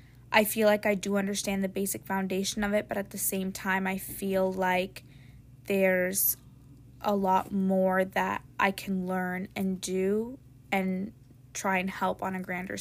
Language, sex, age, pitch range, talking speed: English, female, 20-39, 190-210 Hz, 170 wpm